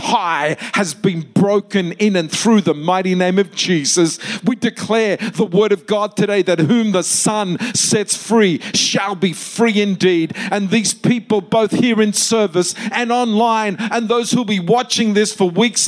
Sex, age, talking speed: male, 50-69, 175 wpm